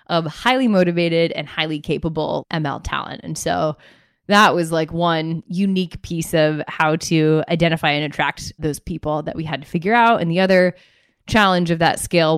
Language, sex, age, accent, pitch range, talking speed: English, female, 20-39, American, 150-180 Hz, 180 wpm